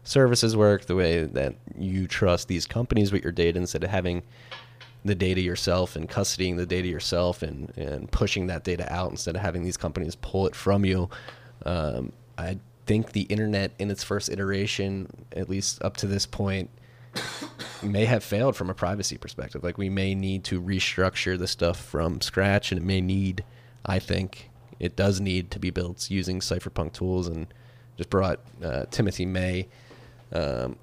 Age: 20-39